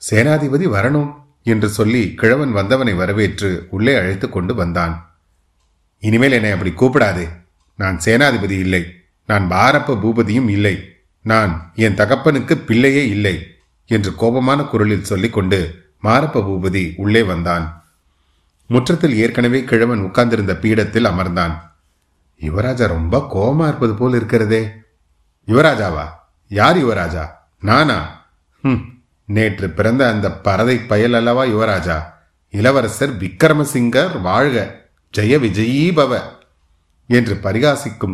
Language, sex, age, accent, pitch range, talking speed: Tamil, male, 30-49, native, 85-120 Hz, 100 wpm